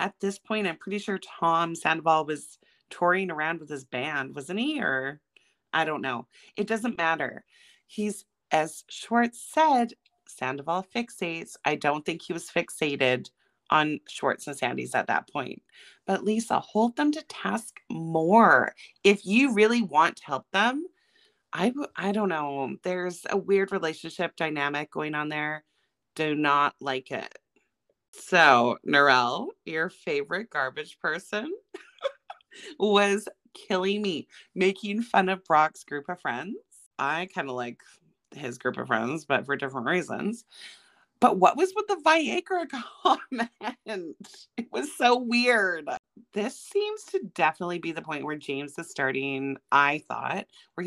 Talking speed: 145 wpm